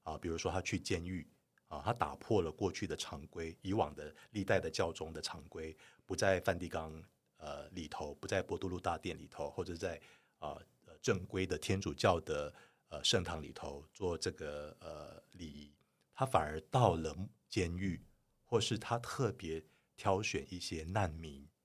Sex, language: male, Chinese